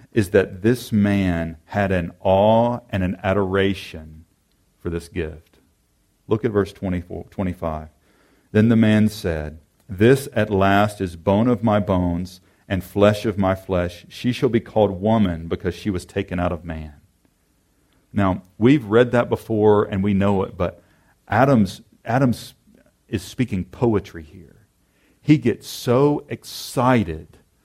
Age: 40-59